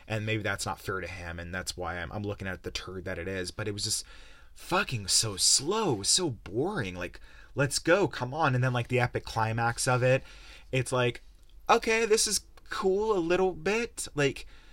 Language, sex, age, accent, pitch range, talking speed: English, male, 30-49, American, 95-135 Hz, 210 wpm